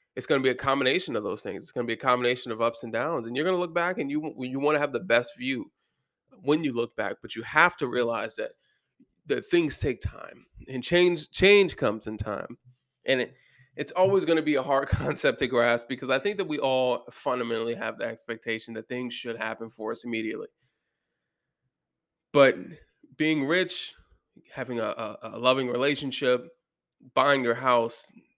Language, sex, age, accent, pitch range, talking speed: English, male, 20-39, American, 115-150 Hz, 190 wpm